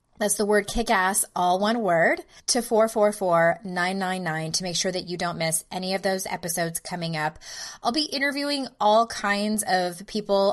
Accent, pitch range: American, 170-220 Hz